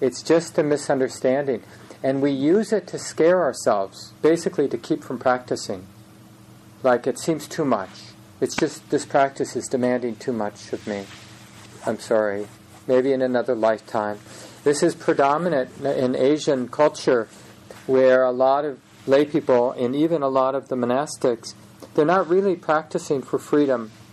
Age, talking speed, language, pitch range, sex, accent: 40-59, 155 wpm, English, 110-135 Hz, male, American